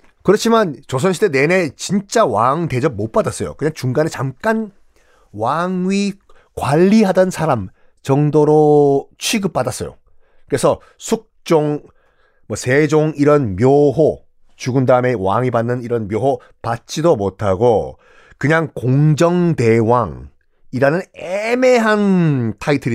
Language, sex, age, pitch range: Korean, male, 40-59, 120-195 Hz